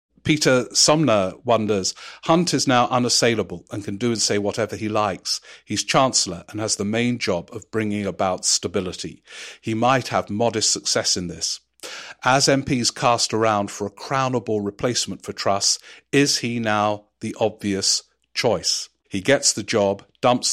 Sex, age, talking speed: male, 50-69, 160 wpm